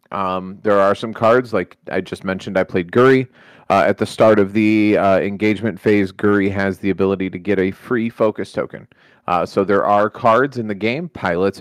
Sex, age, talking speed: male, 30-49, 205 wpm